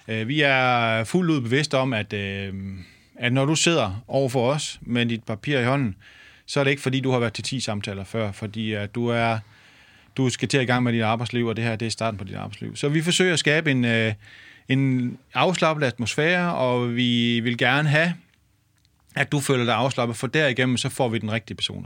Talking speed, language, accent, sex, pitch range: 215 wpm, Danish, native, male, 105-135 Hz